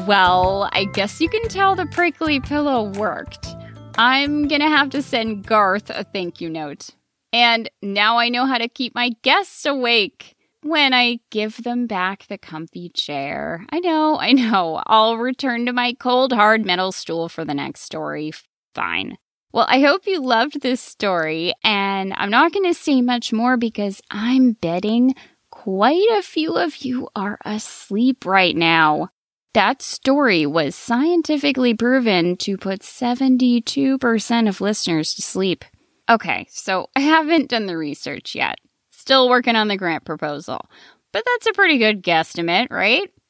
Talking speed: 160 wpm